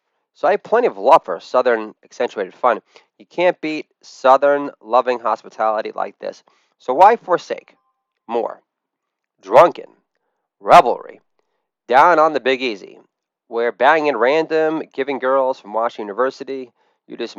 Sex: male